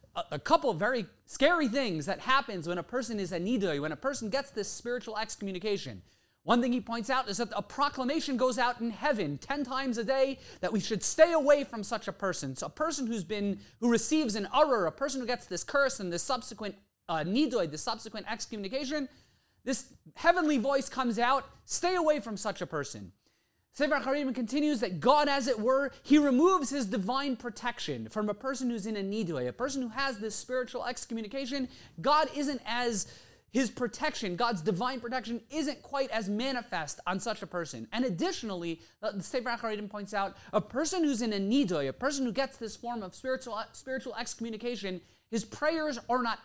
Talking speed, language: 190 wpm, English